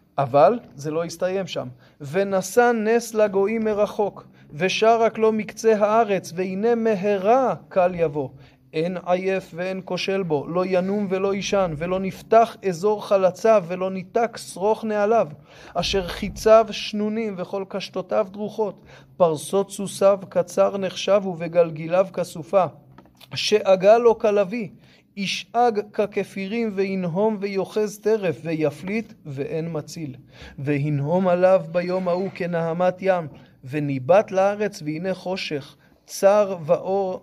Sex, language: male, Hebrew